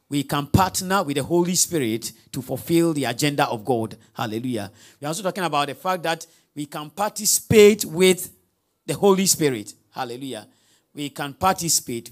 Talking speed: 165 wpm